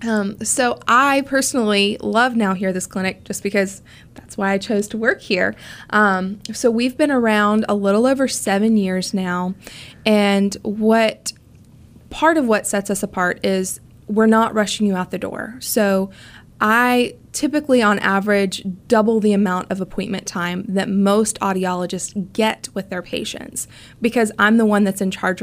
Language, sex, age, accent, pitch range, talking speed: English, female, 20-39, American, 190-225 Hz, 170 wpm